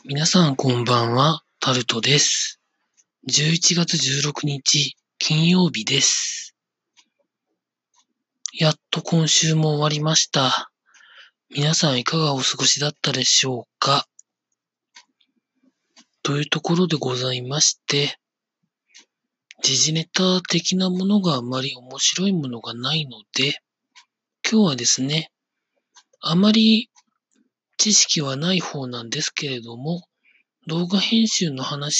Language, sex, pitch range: Japanese, male, 135-190 Hz